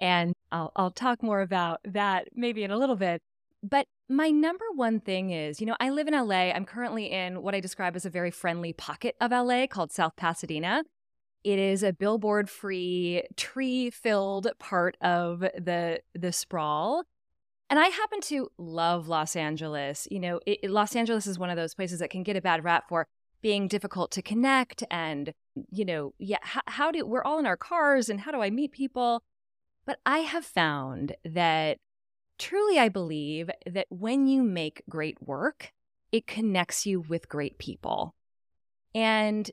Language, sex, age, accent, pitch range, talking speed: English, female, 20-39, American, 175-250 Hz, 180 wpm